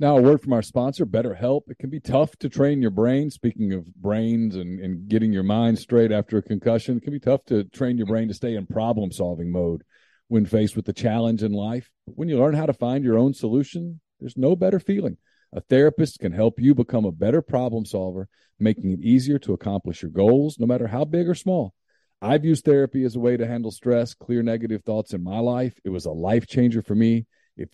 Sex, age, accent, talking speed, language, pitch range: male, 40-59, American, 235 wpm, English, 100-130 Hz